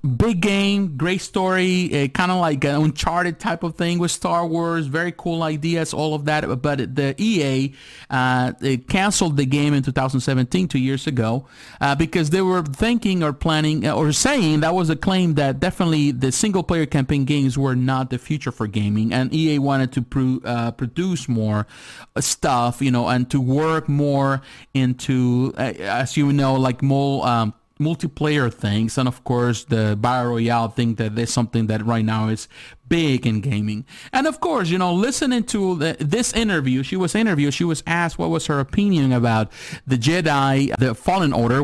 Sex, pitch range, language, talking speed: male, 130-175 Hz, English, 185 wpm